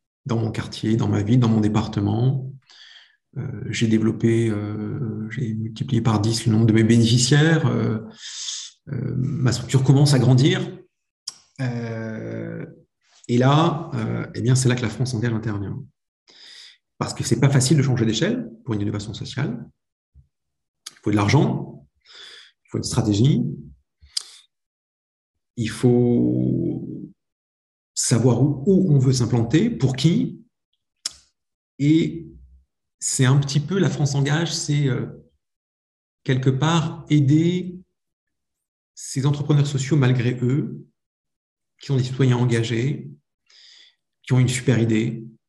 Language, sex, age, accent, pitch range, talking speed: French, male, 40-59, French, 110-140 Hz, 130 wpm